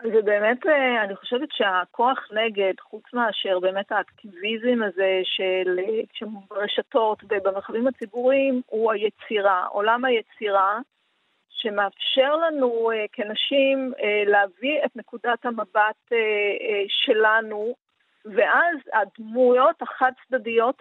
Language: Hebrew